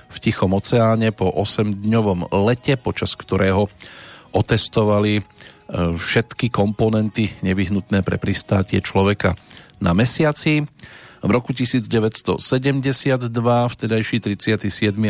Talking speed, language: 85 wpm, Slovak